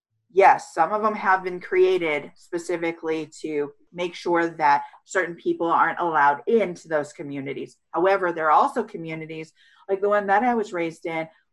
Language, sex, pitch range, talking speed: English, female, 160-210 Hz, 165 wpm